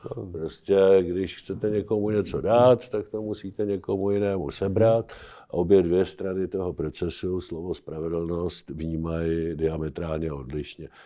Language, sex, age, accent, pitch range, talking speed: Czech, male, 60-79, native, 85-105 Hz, 120 wpm